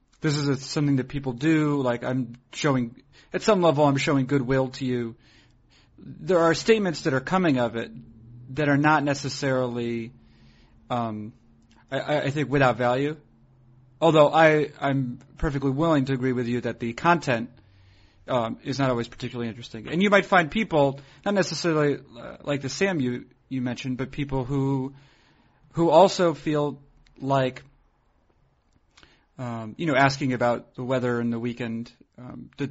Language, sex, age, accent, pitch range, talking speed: English, male, 40-59, American, 120-145 Hz, 160 wpm